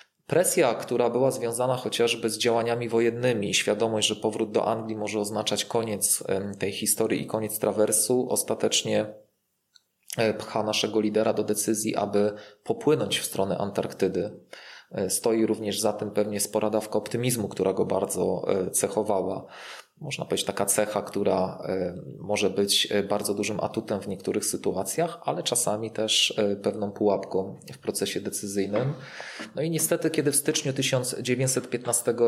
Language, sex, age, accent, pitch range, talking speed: Polish, male, 20-39, native, 105-115 Hz, 130 wpm